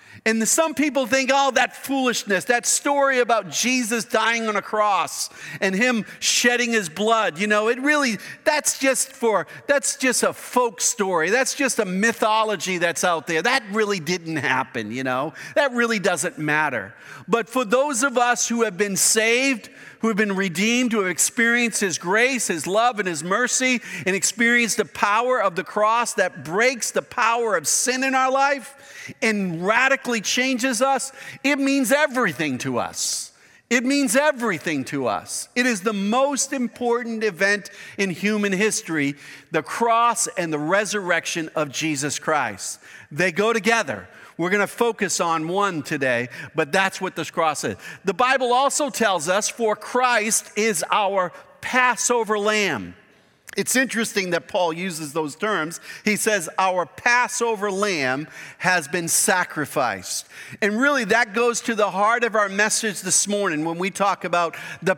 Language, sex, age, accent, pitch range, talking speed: English, male, 50-69, American, 185-245 Hz, 165 wpm